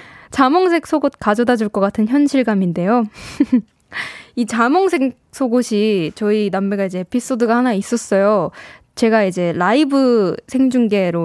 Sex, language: female, Korean